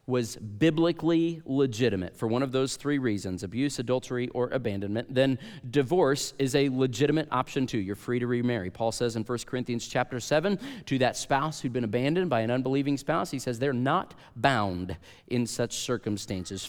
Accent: American